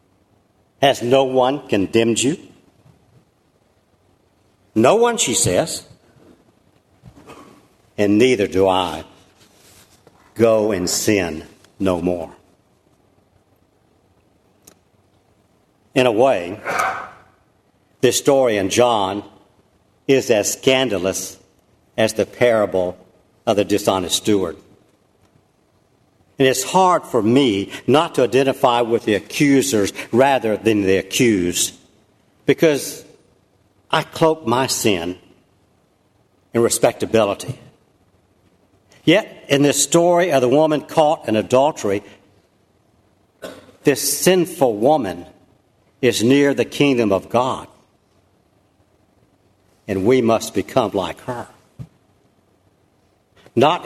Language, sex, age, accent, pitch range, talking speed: English, male, 60-79, American, 95-125 Hz, 90 wpm